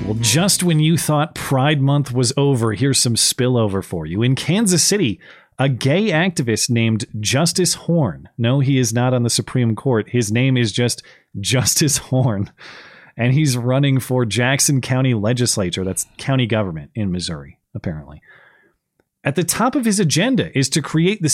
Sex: male